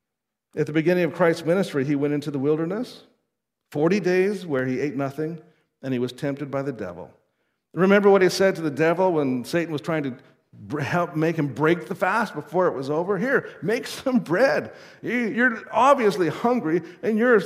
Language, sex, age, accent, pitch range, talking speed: English, male, 50-69, American, 140-185 Hz, 190 wpm